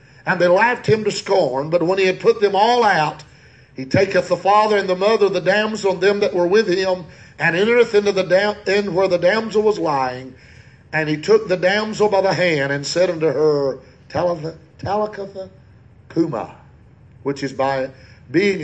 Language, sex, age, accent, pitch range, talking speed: English, male, 50-69, American, 150-200 Hz, 185 wpm